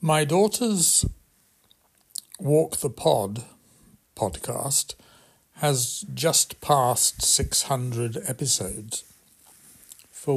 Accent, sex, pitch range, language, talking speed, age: British, male, 115-155 Hz, English, 70 wpm, 60-79